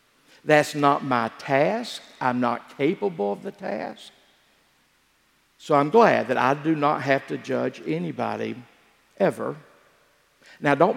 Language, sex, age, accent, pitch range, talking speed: English, male, 50-69, American, 135-175 Hz, 130 wpm